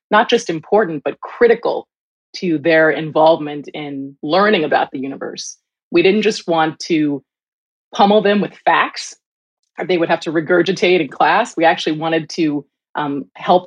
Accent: American